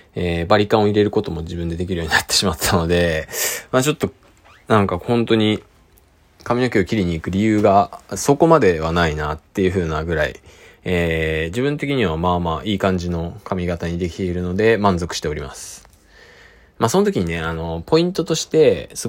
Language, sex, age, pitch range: Japanese, male, 20-39, 85-130 Hz